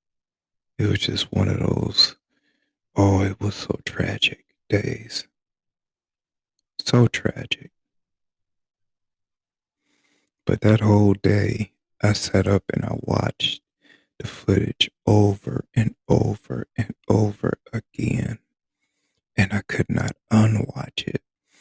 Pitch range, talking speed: 100-110 Hz, 105 wpm